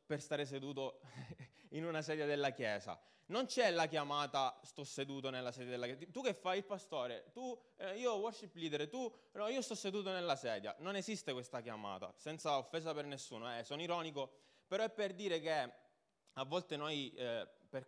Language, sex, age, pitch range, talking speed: Italian, male, 20-39, 135-195 Hz, 185 wpm